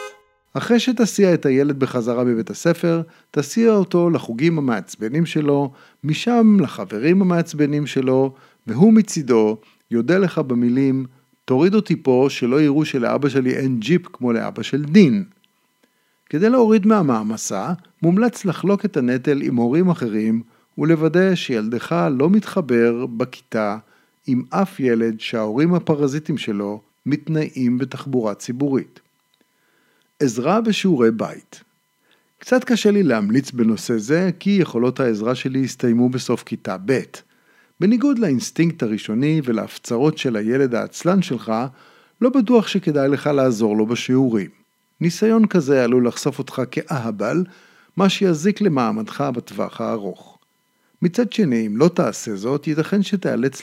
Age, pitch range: 50-69, 125-190 Hz